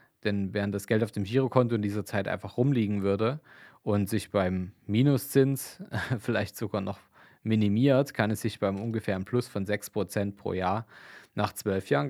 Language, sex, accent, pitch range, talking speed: German, male, German, 100-125 Hz, 170 wpm